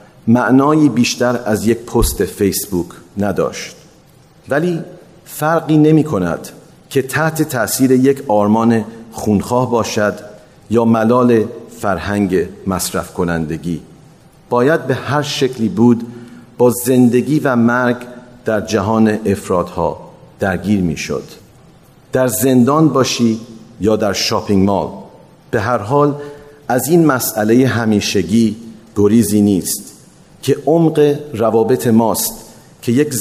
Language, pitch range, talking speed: Persian, 105-130 Hz, 110 wpm